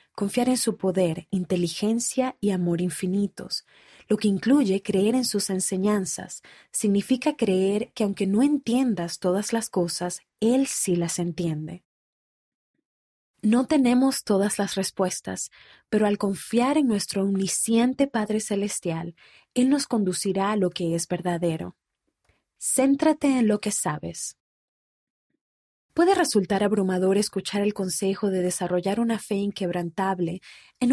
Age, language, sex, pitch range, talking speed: 30-49, Spanish, female, 180-230 Hz, 130 wpm